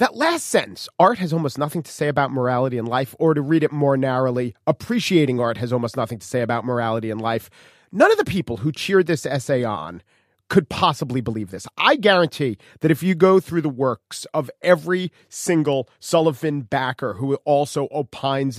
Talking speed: 195 wpm